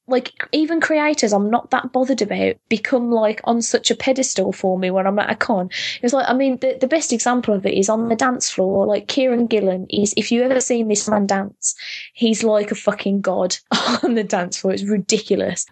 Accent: British